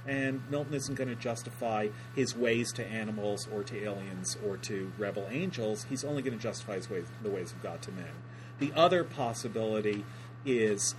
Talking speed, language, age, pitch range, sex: 175 wpm, English, 40-59, 115-145 Hz, male